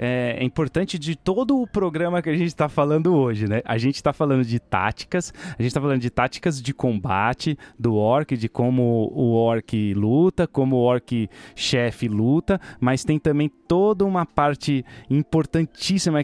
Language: Portuguese